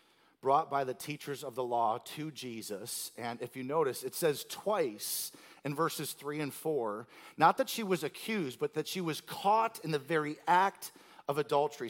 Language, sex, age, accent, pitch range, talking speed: English, male, 40-59, American, 155-215 Hz, 185 wpm